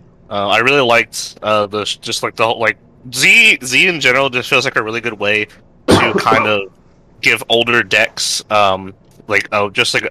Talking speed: 190 wpm